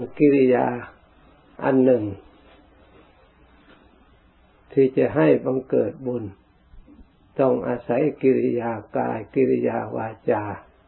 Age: 60-79